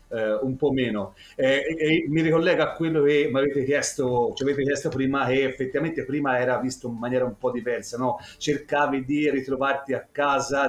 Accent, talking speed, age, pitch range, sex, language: native, 195 wpm, 40-59, 125-150 Hz, male, Italian